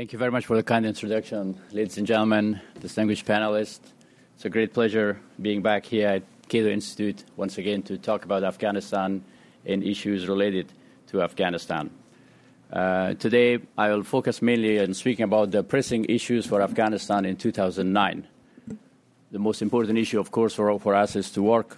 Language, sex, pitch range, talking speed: English, male, 100-110 Hz, 170 wpm